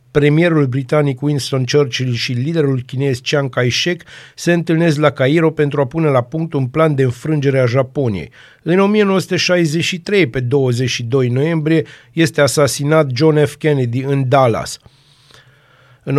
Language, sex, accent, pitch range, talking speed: Romanian, male, native, 130-155 Hz, 135 wpm